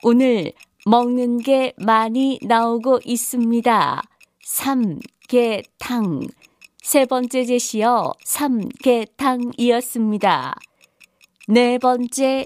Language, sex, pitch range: Korean, female, 235-270 Hz